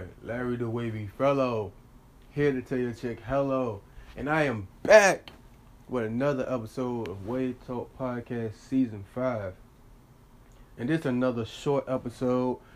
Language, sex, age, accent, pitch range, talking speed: English, male, 30-49, American, 110-130 Hz, 135 wpm